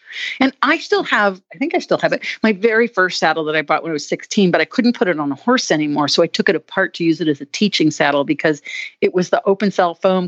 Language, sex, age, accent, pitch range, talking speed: English, female, 50-69, American, 175-225 Hz, 285 wpm